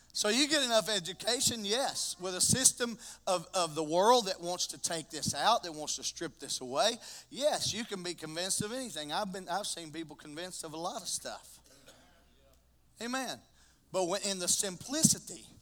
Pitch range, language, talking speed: 175-245 Hz, English, 190 wpm